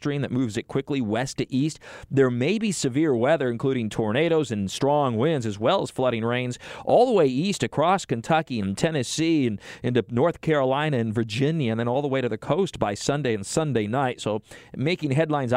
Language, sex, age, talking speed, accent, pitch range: English, male, 40-59, 200 wpm, American, 115-140 Hz